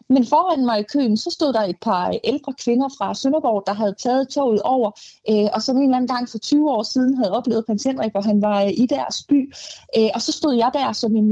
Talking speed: 240 wpm